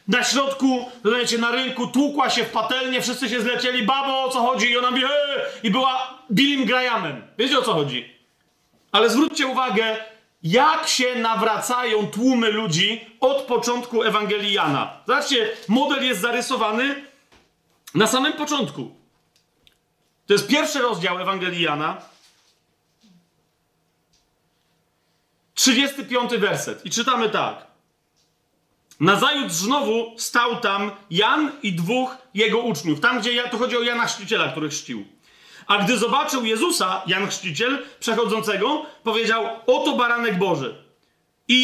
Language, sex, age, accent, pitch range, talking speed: Polish, male, 40-59, native, 220-260 Hz, 125 wpm